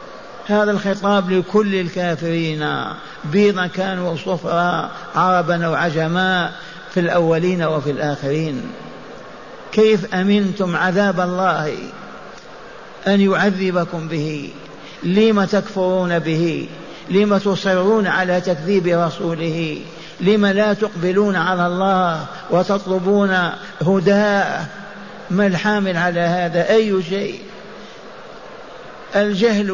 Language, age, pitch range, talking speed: Arabic, 50-69, 180-205 Hz, 85 wpm